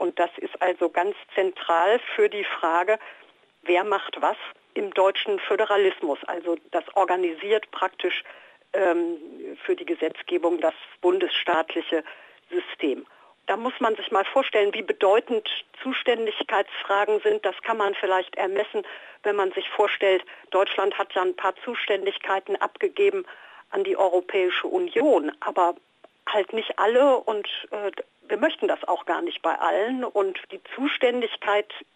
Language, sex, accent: German, female, German